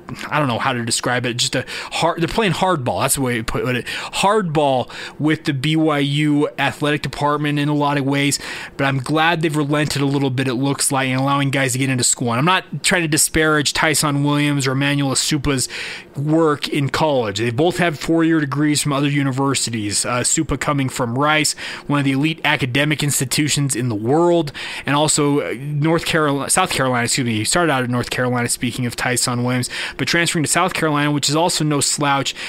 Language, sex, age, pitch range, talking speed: English, male, 30-49, 135-155 Hz, 205 wpm